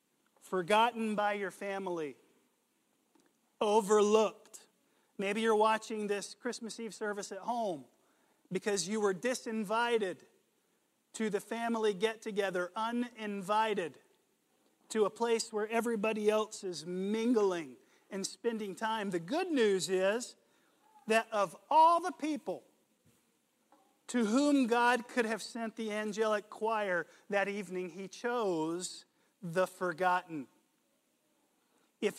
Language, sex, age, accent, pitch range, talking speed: English, male, 40-59, American, 185-230 Hz, 110 wpm